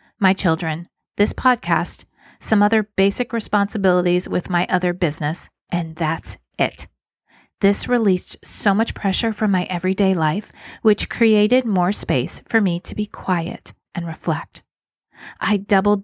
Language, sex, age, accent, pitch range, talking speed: English, female, 40-59, American, 170-210 Hz, 140 wpm